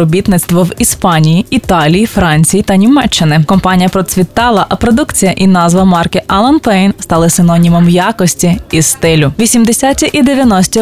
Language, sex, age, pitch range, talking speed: Ukrainian, female, 20-39, 165-205 Hz, 130 wpm